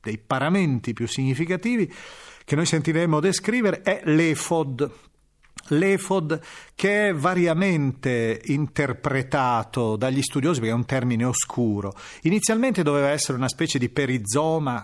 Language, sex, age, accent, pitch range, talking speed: Italian, male, 40-59, native, 130-180 Hz, 115 wpm